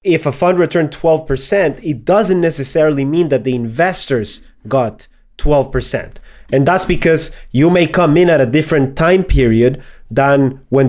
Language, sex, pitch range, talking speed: English, male, 125-150 Hz, 155 wpm